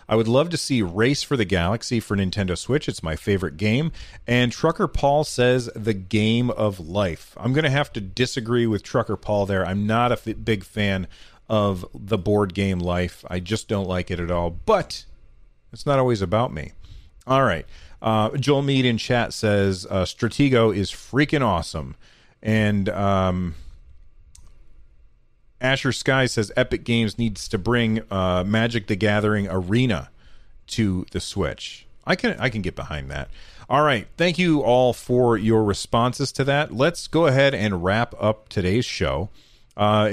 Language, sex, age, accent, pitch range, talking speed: English, male, 40-59, American, 95-125 Hz, 170 wpm